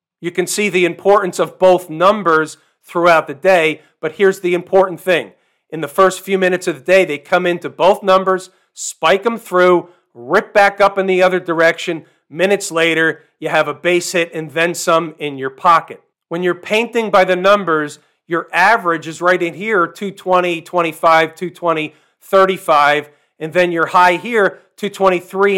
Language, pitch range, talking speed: English, 165-190 Hz, 175 wpm